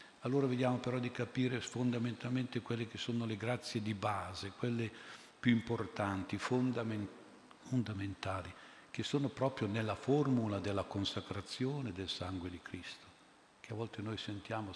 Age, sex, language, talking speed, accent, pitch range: 50-69, male, Italian, 135 wpm, native, 100-115 Hz